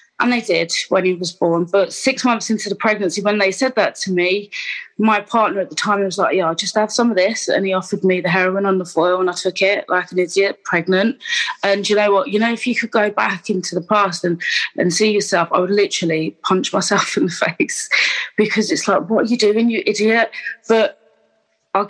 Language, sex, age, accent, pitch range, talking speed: English, female, 20-39, British, 180-215 Hz, 240 wpm